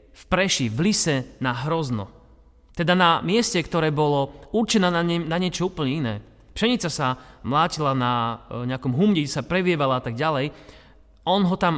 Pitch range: 125-165 Hz